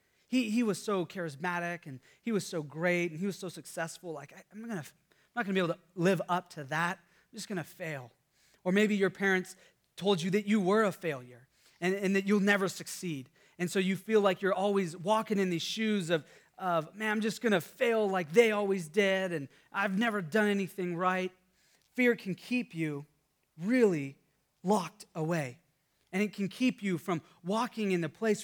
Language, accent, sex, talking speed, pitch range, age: English, American, male, 200 wpm, 155-195 Hz, 30-49